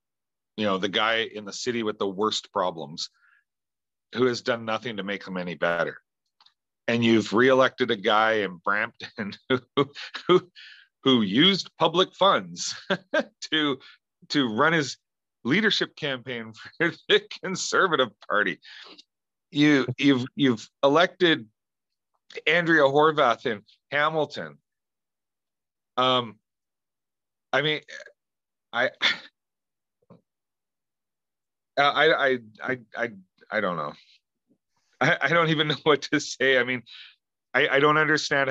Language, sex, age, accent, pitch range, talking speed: English, male, 40-59, American, 105-130 Hz, 120 wpm